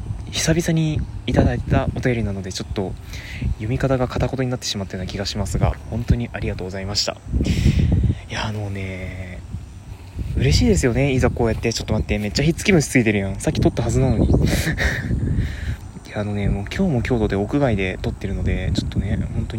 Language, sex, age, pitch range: Japanese, male, 20-39, 95-125 Hz